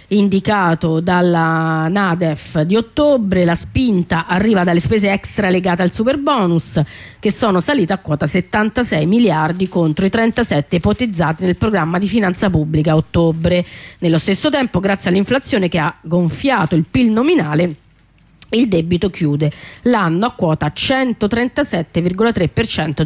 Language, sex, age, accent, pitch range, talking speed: Italian, female, 30-49, native, 165-215 Hz, 130 wpm